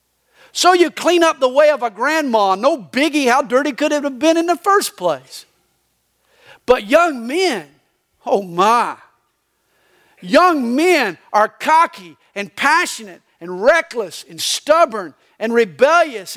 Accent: American